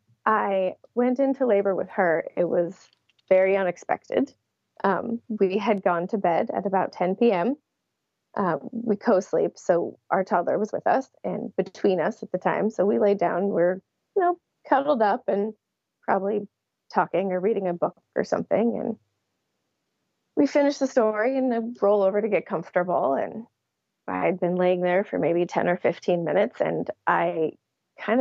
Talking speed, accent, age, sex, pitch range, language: 165 wpm, American, 30-49, female, 190-255 Hz, English